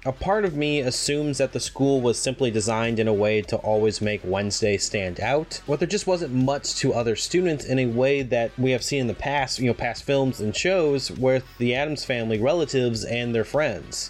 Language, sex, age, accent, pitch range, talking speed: English, male, 20-39, American, 105-135 Hz, 225 wpm